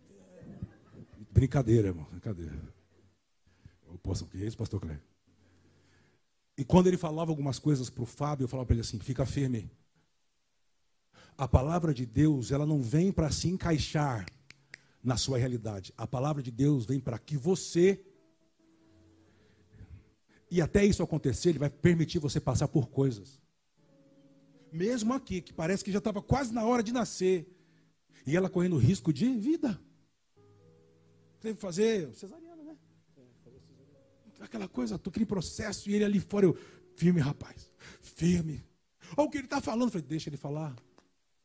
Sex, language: male, Portuguese